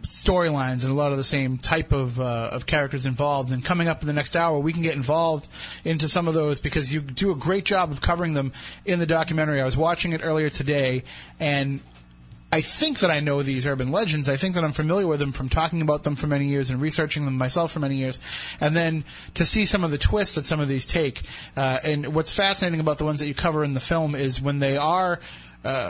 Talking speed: 255 wpm